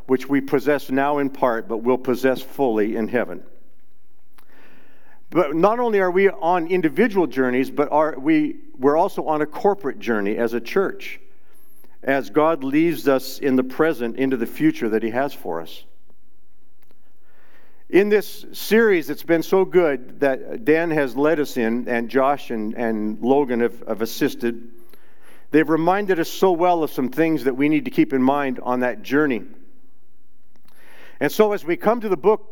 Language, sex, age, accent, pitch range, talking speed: English, male, 50-69, American, 130-180 Hz, 175 wpm